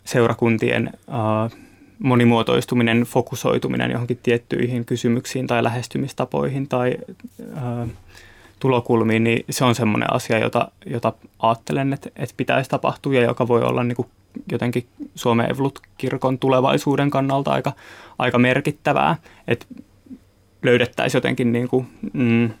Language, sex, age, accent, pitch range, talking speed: Finnish, male, 20-39, native, 115-130 Hz, 115 wpm